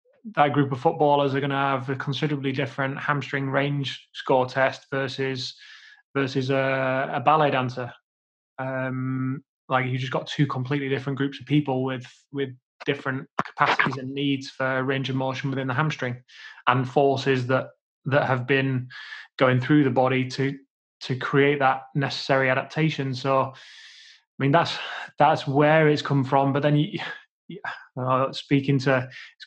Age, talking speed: 20-39, 155 wpm